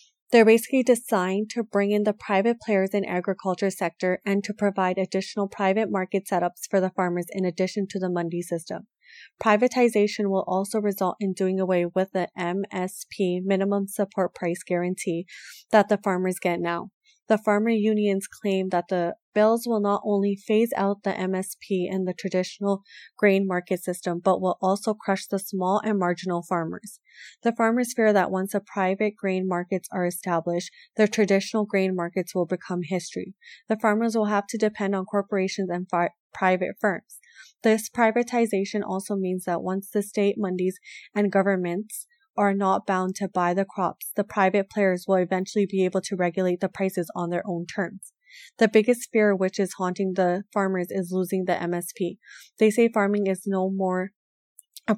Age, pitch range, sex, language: 30-49, 185-210 Hz, female, English